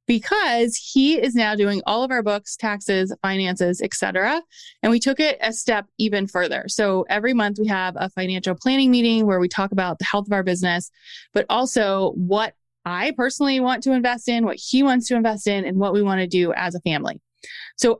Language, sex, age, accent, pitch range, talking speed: English, female, 20-39, American, 190-245 Hz, 210 wpm